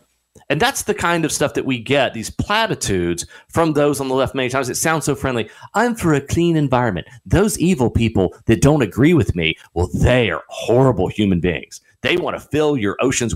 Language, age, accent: English, 40-59, American